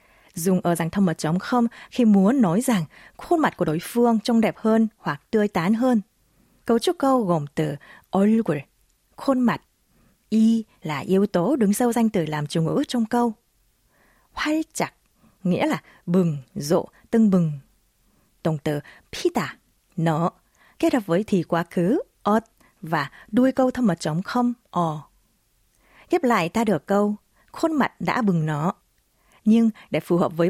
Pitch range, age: 175-250 Hz, 20-39